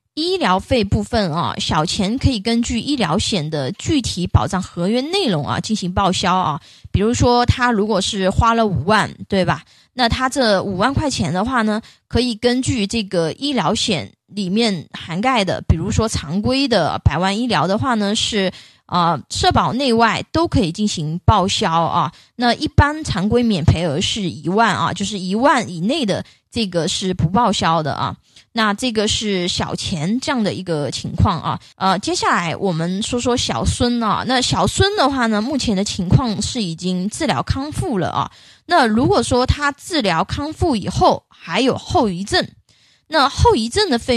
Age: 20-39